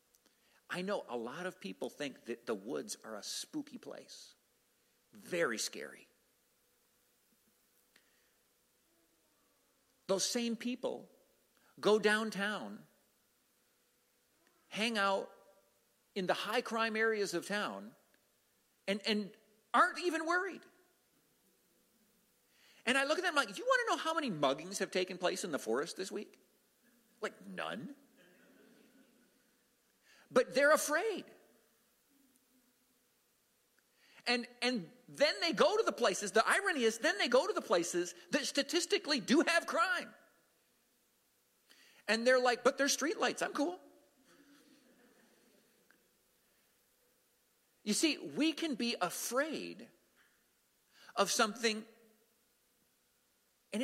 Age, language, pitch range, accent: 50-69, English, 215-290 Hz, American